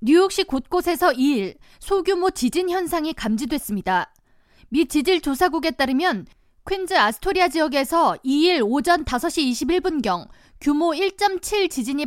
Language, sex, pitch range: Korean, female, 260-355 Hz